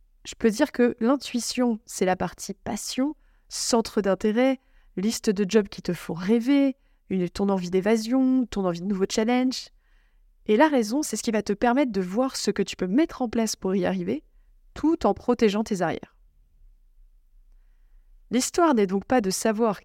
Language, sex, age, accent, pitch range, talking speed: French, female, 20-39, French, 190-250 Hz, 175 wpm